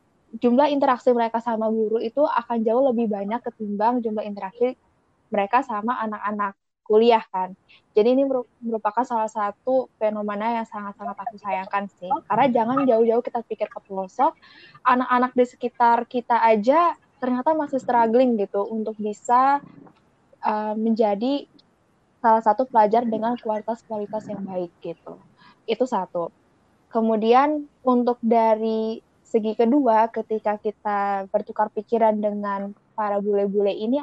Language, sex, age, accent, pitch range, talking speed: Indonesian, female, 20-39, native, 215-250 Hz, 125 wpm